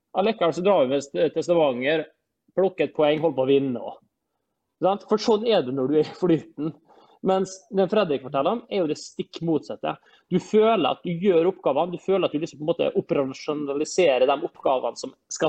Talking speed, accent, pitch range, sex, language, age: 200 wpm, Swedish, 155-200 Hz, male, English, 30-49